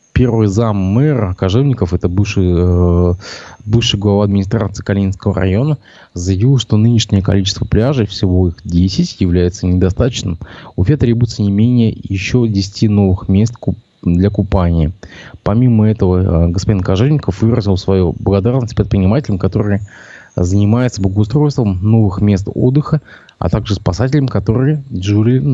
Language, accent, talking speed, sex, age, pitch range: Russian, native, 120 wpm, male, 20-39, 95-120 Hz